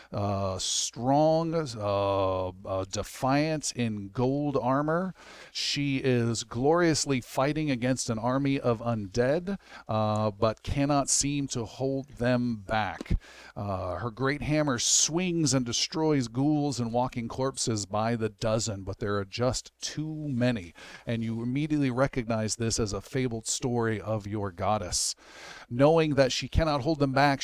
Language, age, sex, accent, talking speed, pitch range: English, 40-59, male, American, 140 wpm, 115-145 Hz